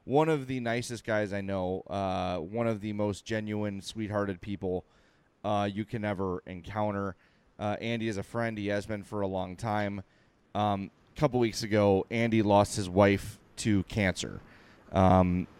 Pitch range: 100-115 Hz